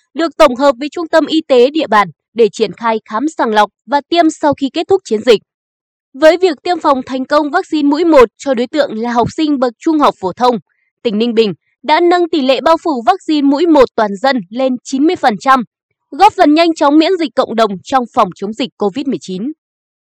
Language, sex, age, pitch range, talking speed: Vietnamese, female, 20-39, 235-320 Hz, 220 wpm